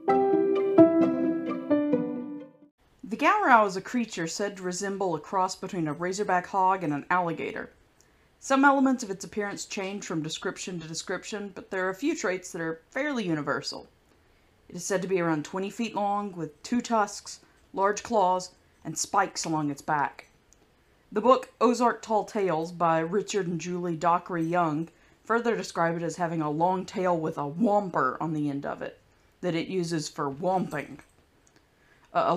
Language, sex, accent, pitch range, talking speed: English, female, American, 165-210 Hz, 165 wpm